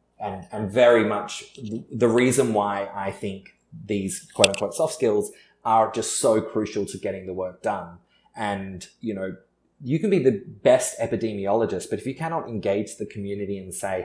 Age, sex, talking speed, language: 20-39, male, 170 wpm, English